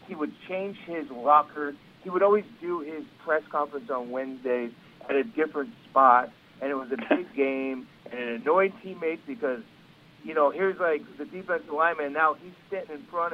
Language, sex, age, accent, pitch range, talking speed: English, male, 50-69, American, 145-195 Hz, 190 wpm